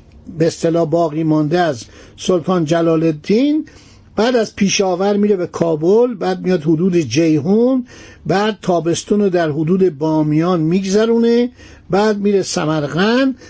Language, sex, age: Persian, male, 60-79